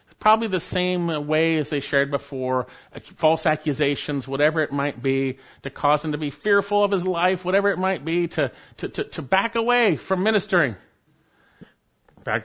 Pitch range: 110-145 Hz